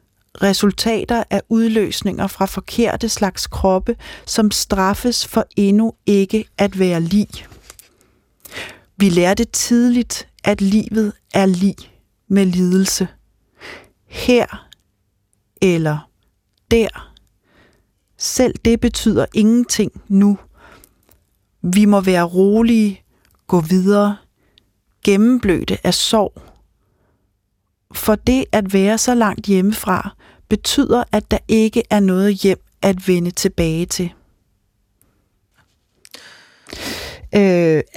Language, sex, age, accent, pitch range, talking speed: Danish, female, 40-59, native, 185-220 Hz, 95 wpm